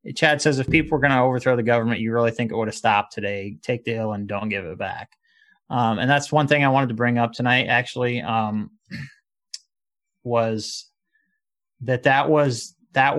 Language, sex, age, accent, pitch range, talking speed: English, male, 20-39, American, 115-140 Hz, 200 wpm